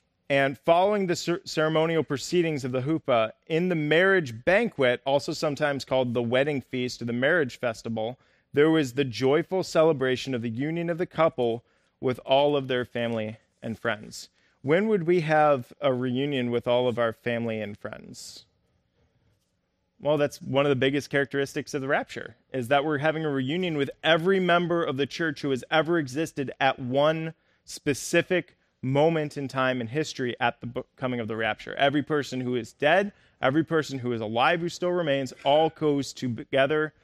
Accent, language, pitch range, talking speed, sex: American, English, 125-155 Hz, 180 wpm, male